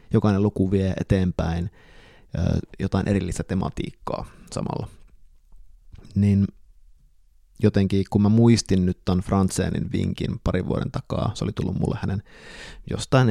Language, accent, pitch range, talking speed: Finnish, native, 85-105 Hz, 115 wpm